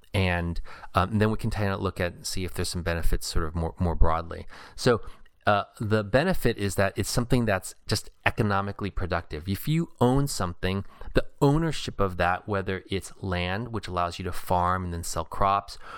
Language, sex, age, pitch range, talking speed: English, male, 30-49, 85-105 Hz, 200 wpm